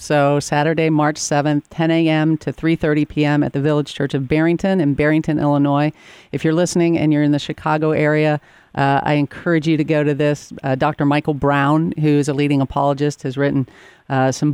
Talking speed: 200 wpm